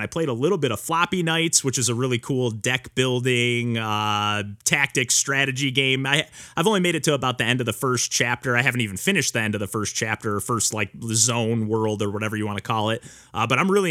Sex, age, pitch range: male, 30-49, 110-135 Hz